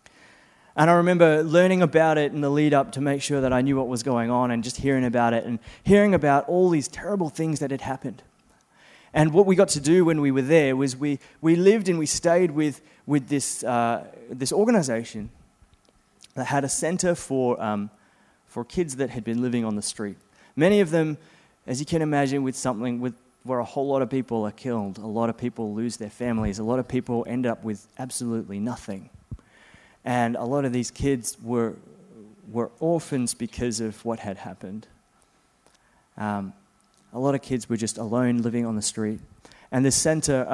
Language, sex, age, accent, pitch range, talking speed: English, male, 20-39, Australian, 115-140 Hz, 200 wpm